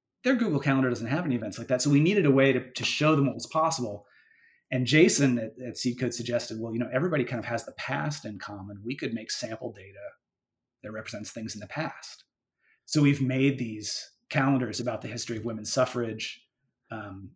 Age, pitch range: 30-49, 115-140 Hz